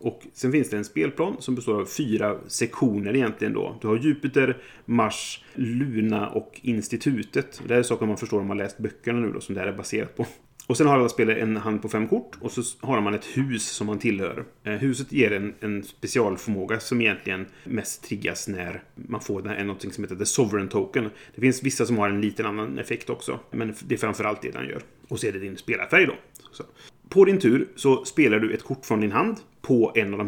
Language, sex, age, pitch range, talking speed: Swedish, male, 30-49, 105-130 Hz, 225 wpm